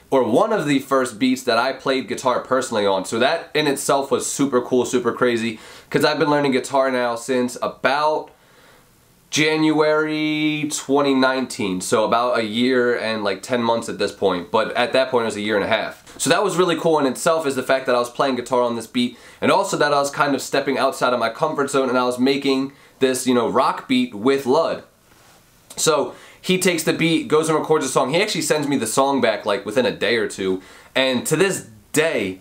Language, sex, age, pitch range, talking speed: English, male, 20-39, 120-150 Hz, 225 wpm